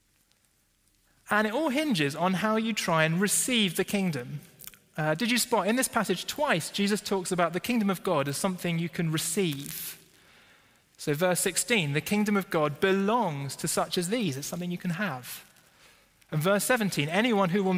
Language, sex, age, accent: English, male, 20-39, British